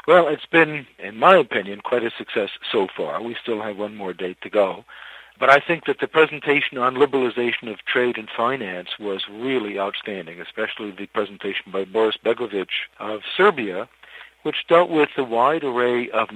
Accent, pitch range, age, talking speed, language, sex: American, 105-130 Hz, 60-79, 180 wpm, English, male